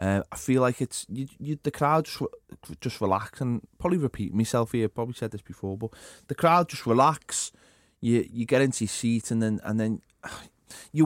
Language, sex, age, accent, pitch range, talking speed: English, male, 20-39, British, 110-140 Hz, 205 wpm